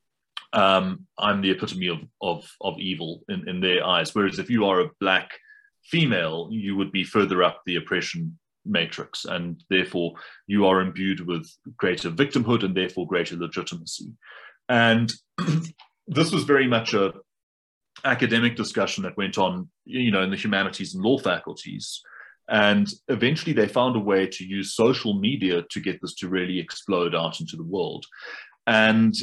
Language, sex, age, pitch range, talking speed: English, male, 30-49, 90-125 Hz, 160 wpm